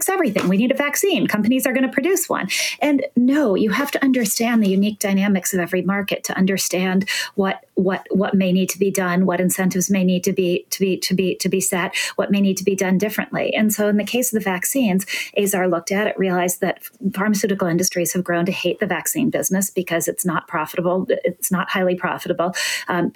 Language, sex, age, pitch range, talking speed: English, female, 40-59, 180-225 Hz, 220 wpm